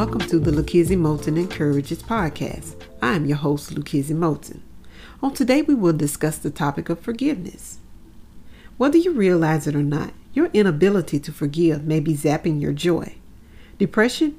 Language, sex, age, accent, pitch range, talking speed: English, female, 40-59, American, 155-205 Hz, 160 wpm